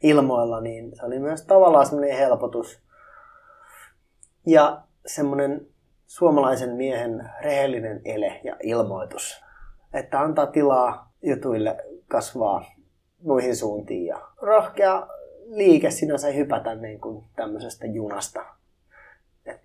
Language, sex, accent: Finnish, male, native